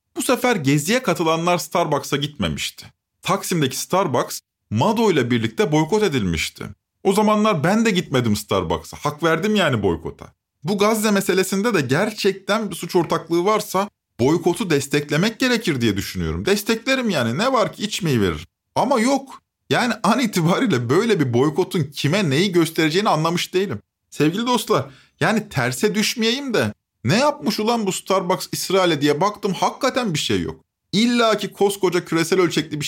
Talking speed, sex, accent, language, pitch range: 150 wpm, male, native, Turkish, 135-210 Hz